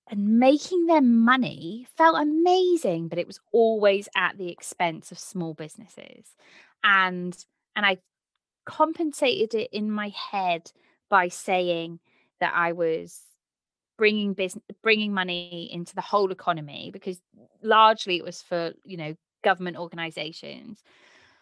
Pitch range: 170-215 Hz